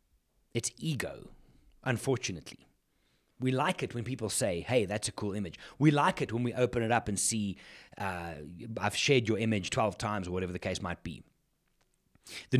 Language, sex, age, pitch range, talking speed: English, male, 30-49, 110-150 Hz, 180 wpm